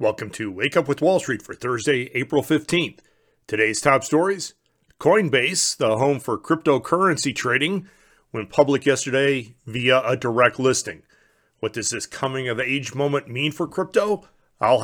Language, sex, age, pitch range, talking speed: English, male, 40-59, 125-145 Hz, 155 wpm